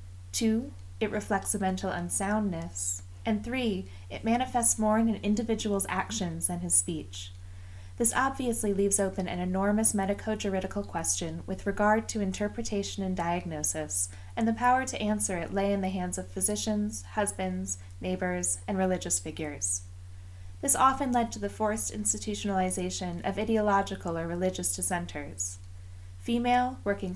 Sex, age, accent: female, 20-39, American